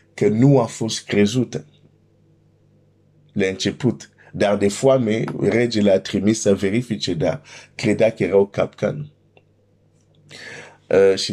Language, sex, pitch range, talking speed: Romanian, male, 95-120 Hz, 115 wpm